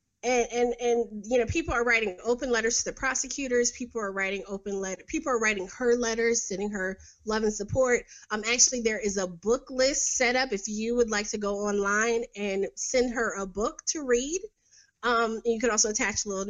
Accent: American